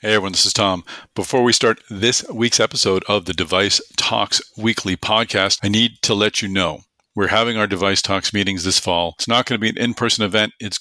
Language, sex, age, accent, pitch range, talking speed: English, male, 50-69, American, 95-110 Hz, 230 wpm